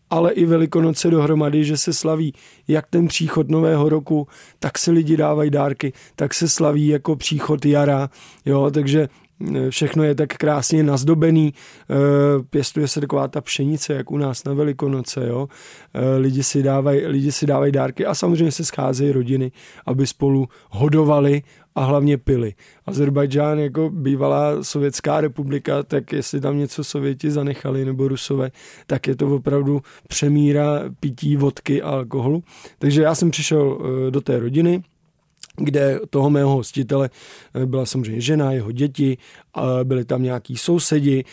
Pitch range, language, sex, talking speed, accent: 135-155 Hz, Czech, male, 140 wpm, native